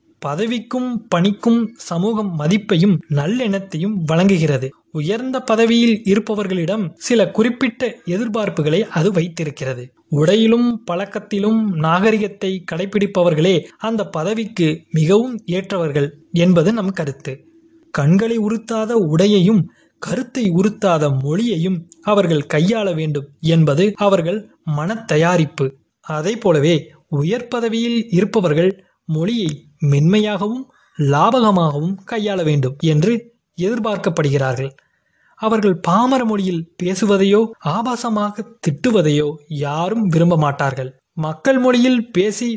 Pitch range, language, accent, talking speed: 160-220 Hz, Tamil, native, 80 wpm